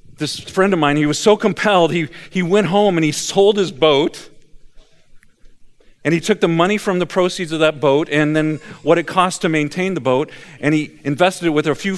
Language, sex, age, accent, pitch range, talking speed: English, male, 50-69, American, 140-175 Hz, 220 wpm